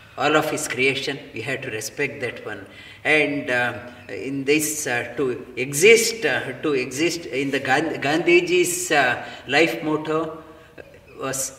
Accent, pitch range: Indian, 140-190 Hz